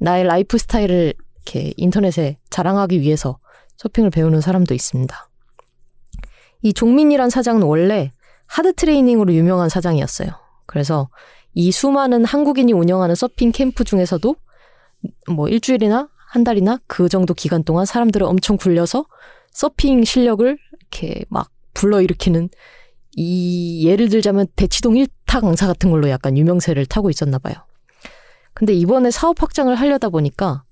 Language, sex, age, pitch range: Korean, female, 20-39, 165-235 Hz